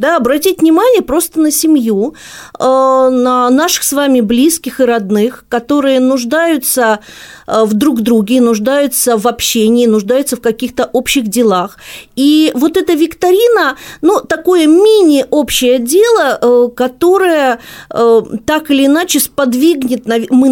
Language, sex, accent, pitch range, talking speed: Russian, female, native, 230-295 Hz, 115 wpm